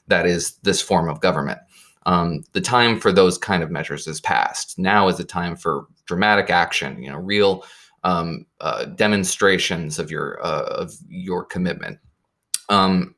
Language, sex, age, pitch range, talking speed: English, male, 20-39, 95-125 Hz, 165 wpm